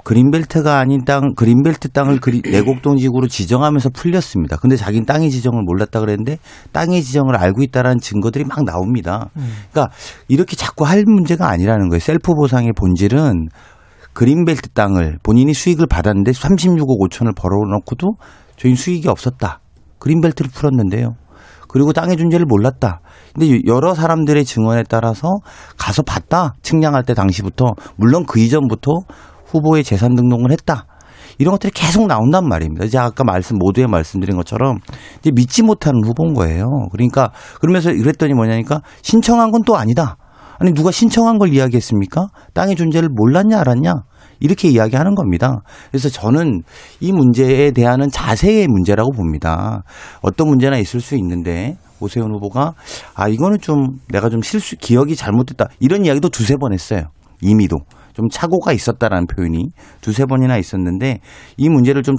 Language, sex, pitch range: Korean, male, 105-155 Hz